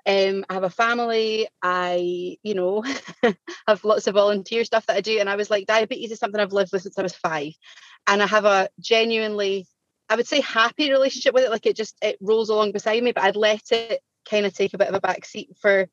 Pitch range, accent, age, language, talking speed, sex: 185-225 Hz, British, 30-49, English, 240 wpm, female